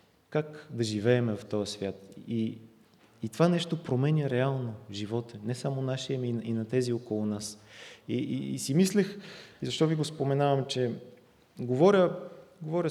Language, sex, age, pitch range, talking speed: English, male, 30-49, 115-145 Hz, 160 wpm